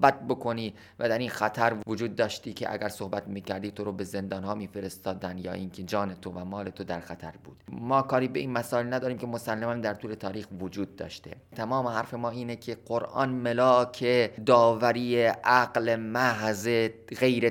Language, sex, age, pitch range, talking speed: Persian, male, 30-49, 100-120 Hz, 180 wpm